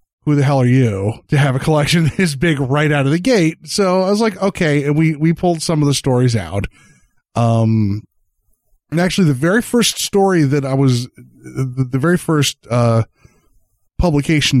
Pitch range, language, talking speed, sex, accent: 120-160 Hz, English, 190 wpm, male, American